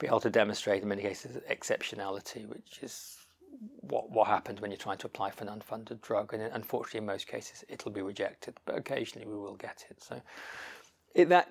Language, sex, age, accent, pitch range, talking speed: English, male, 40-59, British, 110-135 Hz, 200 wpm